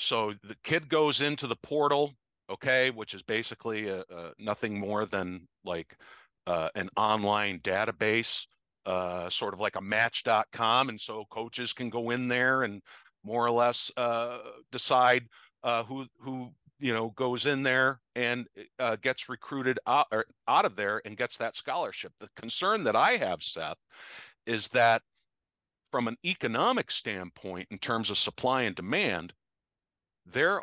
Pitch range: 110-135 Hz